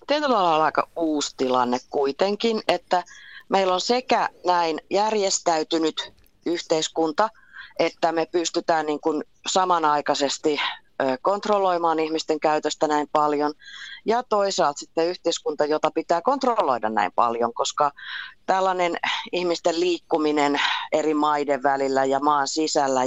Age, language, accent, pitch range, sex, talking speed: 30-49, Finnish, native, 140-175 Hz, female, 110 wpm